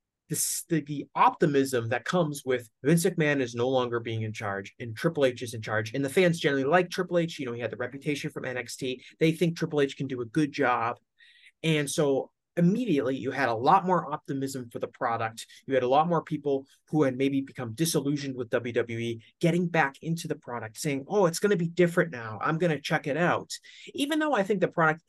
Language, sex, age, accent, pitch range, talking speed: English, male, 30-49, American, 125-165 Hz, 225 wpm